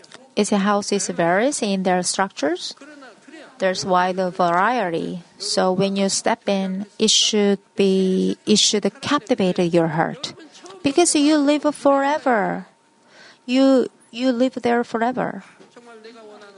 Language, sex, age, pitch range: Korean, female, 30-49, 200-270 Hz